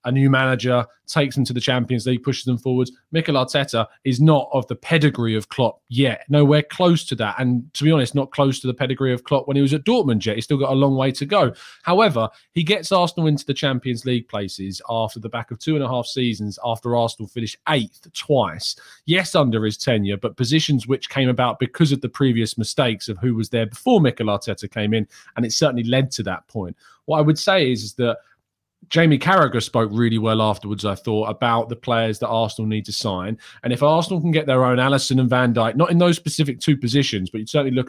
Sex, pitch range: male, 115-145 Hz